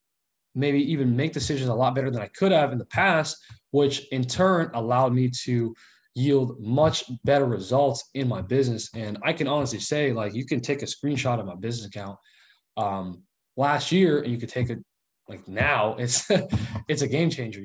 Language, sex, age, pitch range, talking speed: English, male, 20-39, 115-140 Hz, 195 wpm